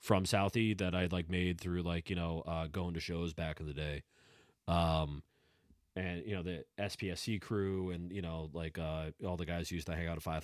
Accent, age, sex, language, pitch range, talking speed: American, 30-49, male, English, 80-100 Hz, 225 wpm